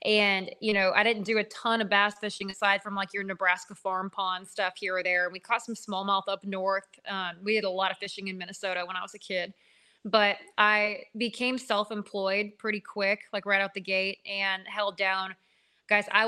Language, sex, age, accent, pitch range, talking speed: English, female, 20-39, American, 195-220 Hz, 215 wpm